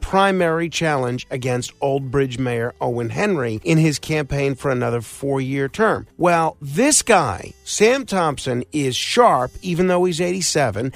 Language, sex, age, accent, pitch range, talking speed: English, male, 50-69, American, 140-200 Hz, 150 wpm